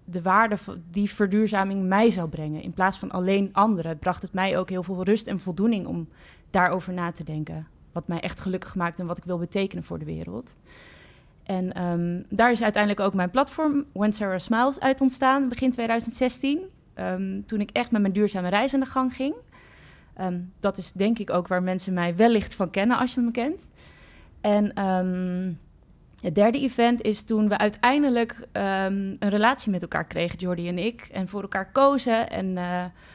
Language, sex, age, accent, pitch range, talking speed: Dutch, female, 20-39, Dutch, 185-230 Hz, 185 wpm